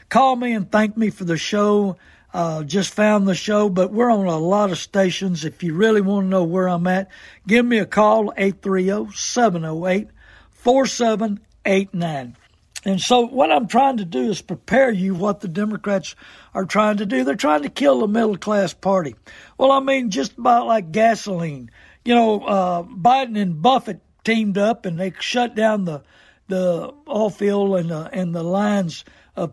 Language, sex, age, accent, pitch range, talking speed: English, male, 60-79, American, 185-230 Hz, 175 wpm